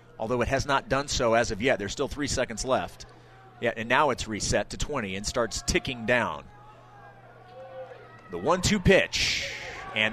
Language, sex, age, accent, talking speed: English, male, 30-49, American, 165 wpm